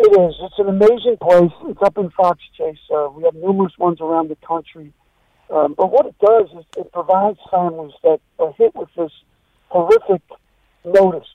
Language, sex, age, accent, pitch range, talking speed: English, male, 60-79, American, 165-205 Hz, 185 wpm